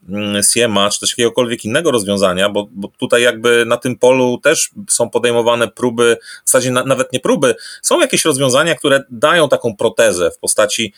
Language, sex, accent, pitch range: Polish, male, native, 115-145 Hz